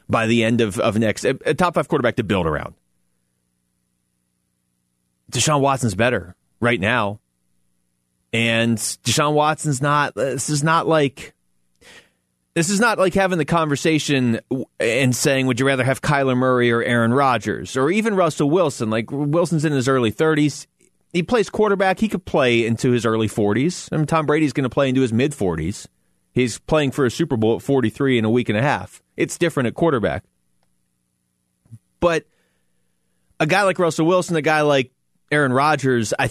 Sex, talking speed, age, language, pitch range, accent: male, 170 wpm, 30-49, English, 100-150 Hz, American